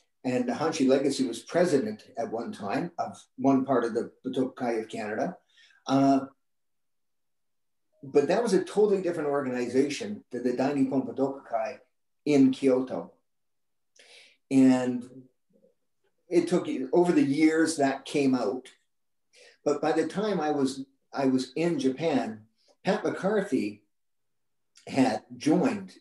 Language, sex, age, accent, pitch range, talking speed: English, male, 50-69, American, 125-155 Hz, 125 wpm